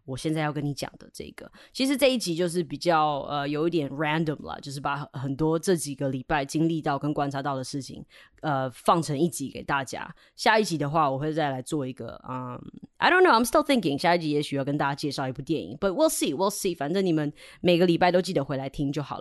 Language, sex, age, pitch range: Chinese, female, 20-39, 150-195 Hz